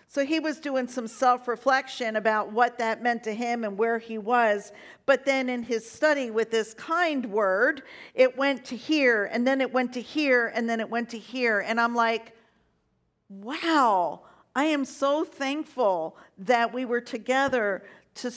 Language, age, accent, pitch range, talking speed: English, 50-69, American, 220-270 Hz, 175 wpm